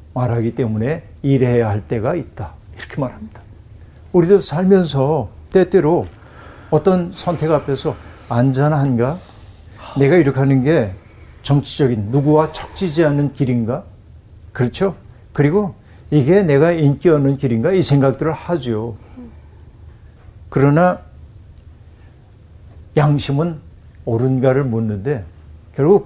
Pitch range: 110-155 Hz